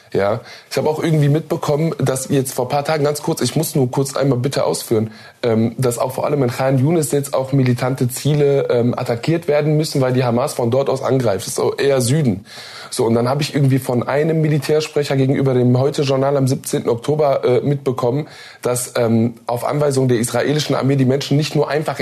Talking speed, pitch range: 200 wpm, 130-165 Hz